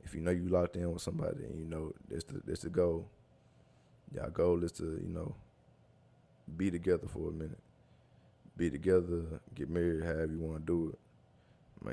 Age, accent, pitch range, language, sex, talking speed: 20-39, American, 80-90 Hz, English, male, 185 wpm